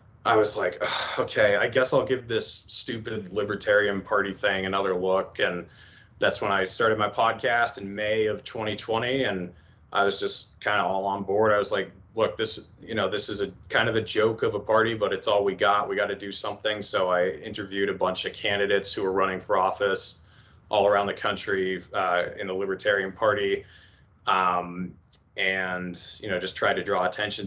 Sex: male